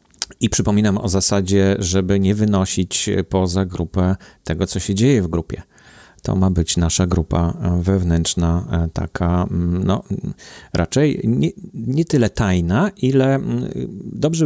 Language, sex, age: Polish, male, 40-59